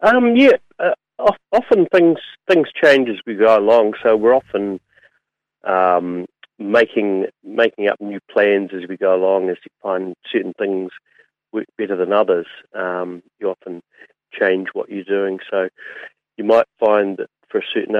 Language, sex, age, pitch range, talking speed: English, male, 40-59, 90-105 Hz, 160 wpm